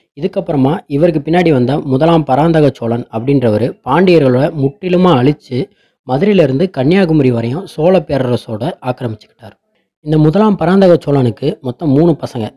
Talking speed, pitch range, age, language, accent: 110 wpm, 120-160 Hz, 20-39, Tamil, native